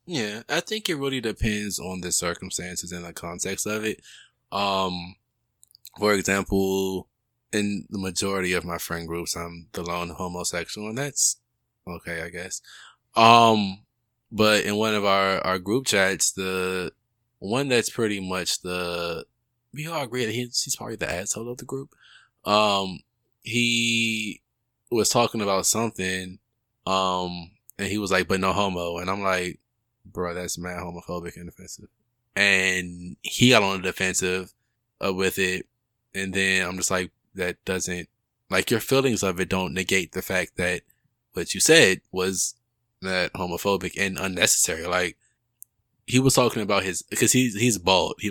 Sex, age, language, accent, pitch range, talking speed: male, 20-39, English, American, 90-115 Hz, 160 wpm